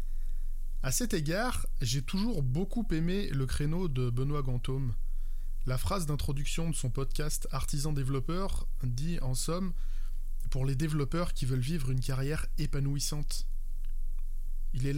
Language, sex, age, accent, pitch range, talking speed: French, male, 20-39, French, 125-160 Hz, 135 wpm